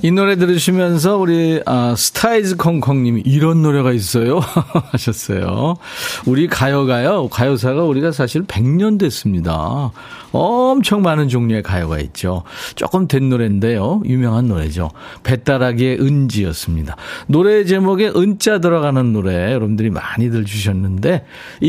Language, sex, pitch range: Korean, male, 110-165 Hz